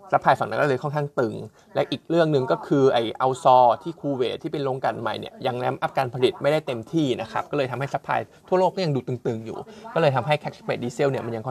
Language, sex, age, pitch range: Thai, male, 20-39, 120-145 Hz